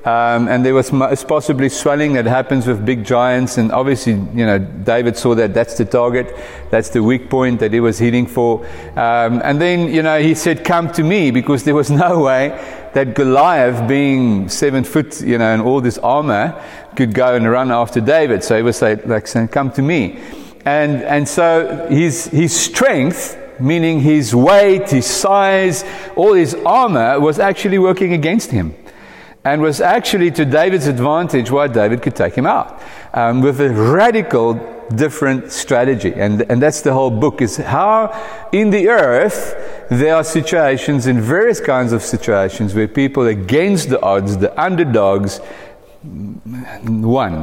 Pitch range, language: 120-155 Hz, English